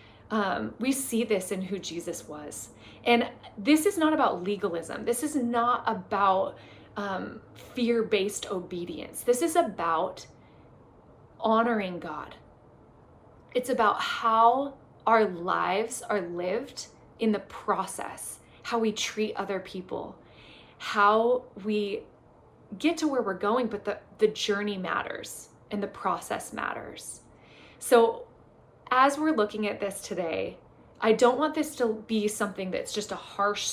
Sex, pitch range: female, 200-245 Hz